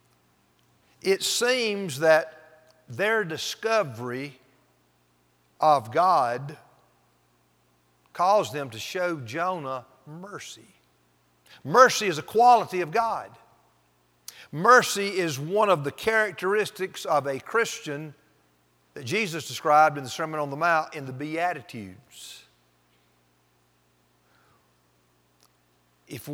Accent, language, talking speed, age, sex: American, English, 95 wpm, 50-69, male